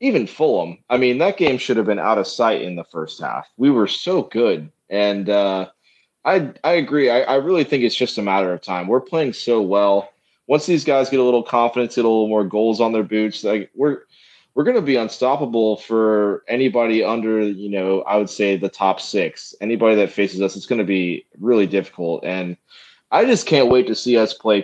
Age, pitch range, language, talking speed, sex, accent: 20-39, 95-115 Hz, English, 220 wpm, male, American